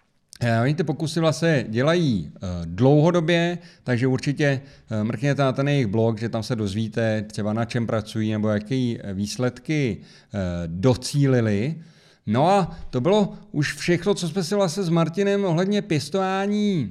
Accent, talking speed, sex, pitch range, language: native, 150 wpm, male, 120-160 Hz, Czech